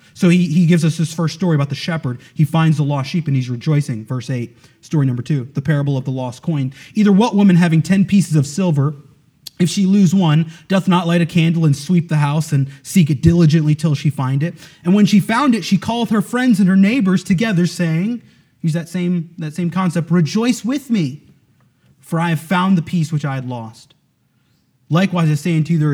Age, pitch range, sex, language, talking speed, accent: 30-49, 150-185 Hz, male, English, 225 wpm, American